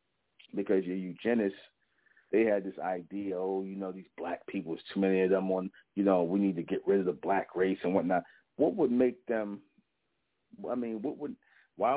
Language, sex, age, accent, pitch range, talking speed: English, male, 40-59, American, 95-105 Hz, 205 wpm